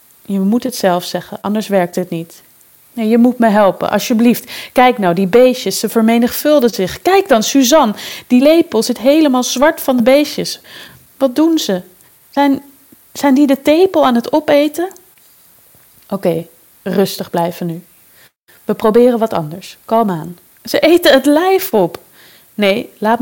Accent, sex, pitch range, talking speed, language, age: Dutch, female, 185-250 Hz, 160 wpm, Dutch, 30-49